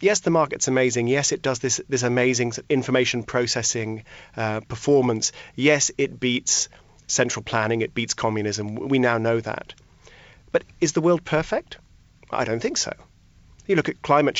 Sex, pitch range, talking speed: male, 120-150 Hz, 165 wpm